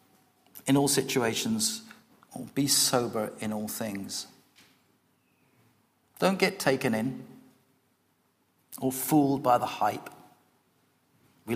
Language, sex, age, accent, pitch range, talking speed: English, male, 50-69, British, 105-135 Hz, 95 wpm